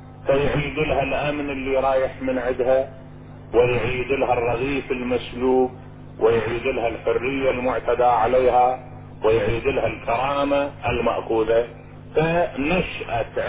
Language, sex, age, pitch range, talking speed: Arabic, male, 40-59, 130-160 Hz, 95 wpm